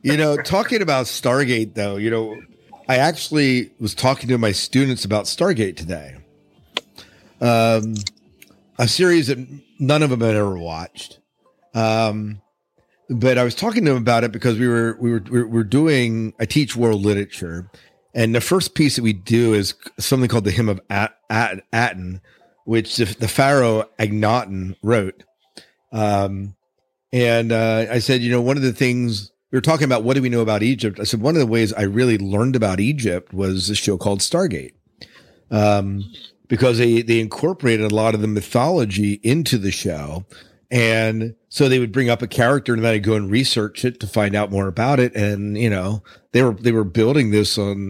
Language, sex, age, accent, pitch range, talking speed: English, male, 50-69, American, 100-125 Hz, 190 wpm